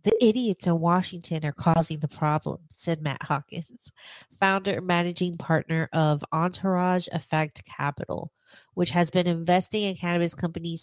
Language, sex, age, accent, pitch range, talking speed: English, female, 30-49, American, 160-185 Hz, 145 wpm